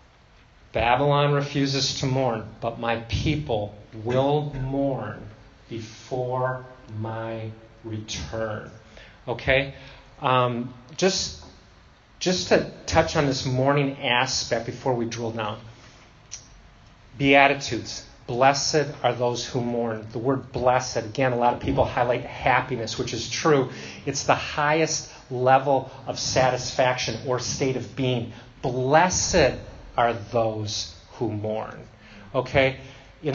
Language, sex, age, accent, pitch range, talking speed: English, male, 30-49, American, 115-140 Hz, 115 wpm